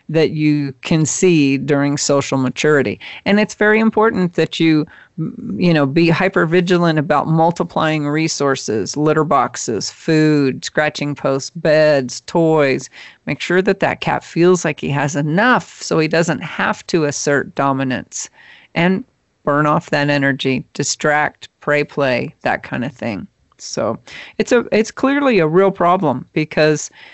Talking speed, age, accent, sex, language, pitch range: 145 wpm, 40-59, American, female, English, 145-180 Hz